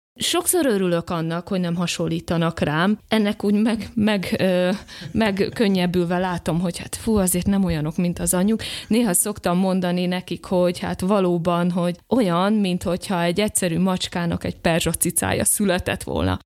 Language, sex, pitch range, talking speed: Hungarian, female, 165-195 Hz, 140 wpm